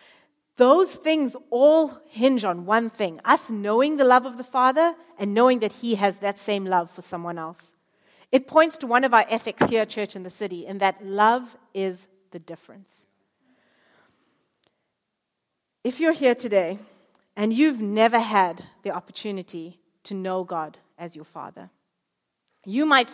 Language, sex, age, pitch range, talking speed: English, female, 40-59, 175-225 Hz, 160 wpm